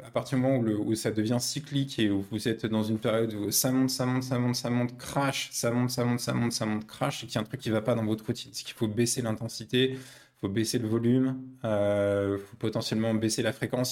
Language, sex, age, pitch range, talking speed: French, male, 20-39, 110-130 Hz, 295 wpm